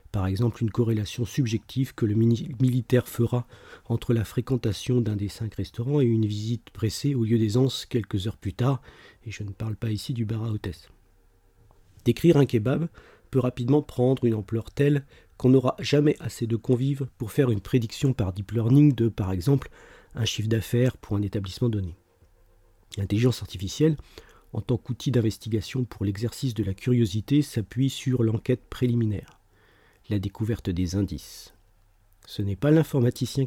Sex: male